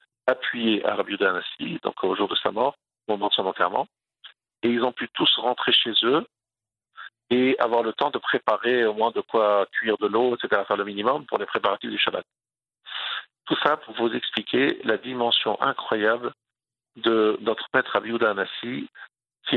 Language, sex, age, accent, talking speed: French, male, 50-69, French, 185 wpm